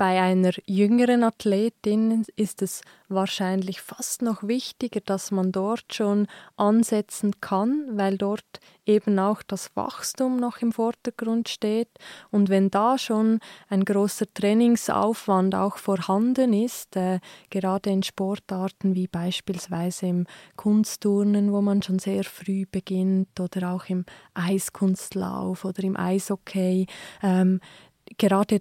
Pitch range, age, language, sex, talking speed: 190-210 Hz, 20-39, German, female, 120 wpm